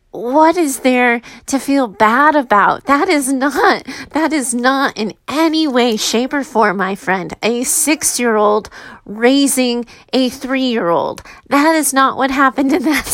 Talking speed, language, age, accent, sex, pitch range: 150 wpm, English, 30-49, American, female, 235-300 Hz